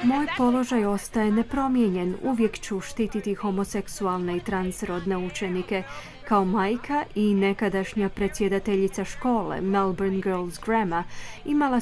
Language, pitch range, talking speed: Croatian, 195-235 Hz, 105 wpm